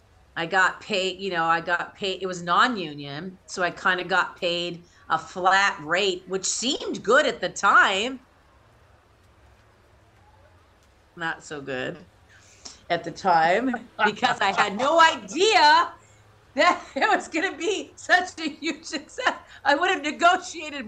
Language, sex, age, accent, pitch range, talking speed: English, female, 50-69, American, 175-265 Hz, 145 wpm